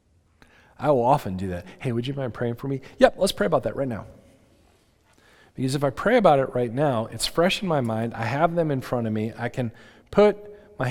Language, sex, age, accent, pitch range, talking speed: English, male, 40-59, American, 110-145 Hz, 235 wpm